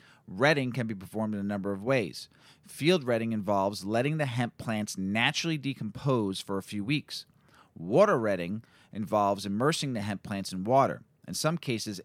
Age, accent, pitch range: 40-59, American, 105-145 Hz